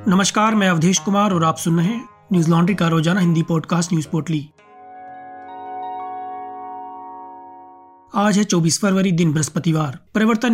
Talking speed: 130 wpm